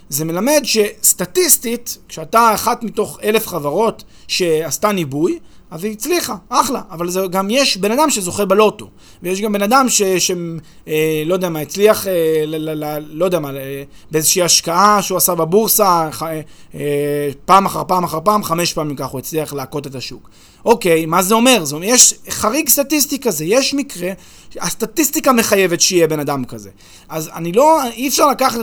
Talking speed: 175 wpm